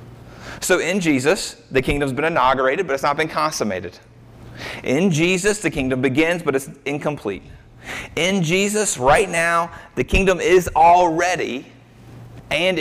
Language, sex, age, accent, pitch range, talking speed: English, male, 30-49, American, 120-170 Hz, 135 wpm